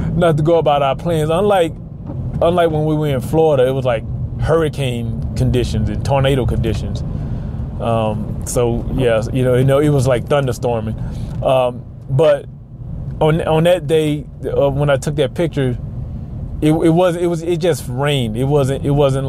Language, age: English, 20-39